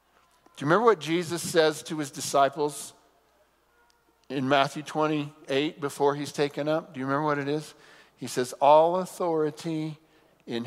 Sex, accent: male, American